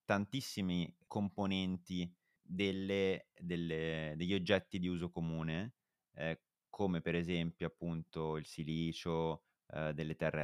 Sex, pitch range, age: male, 80-100 Hz, 30-49